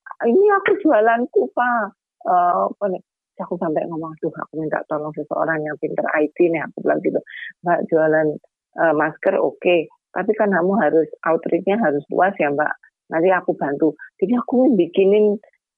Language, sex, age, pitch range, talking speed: Indonesian, female, 30-49, 160-215 Hz, 165 wpm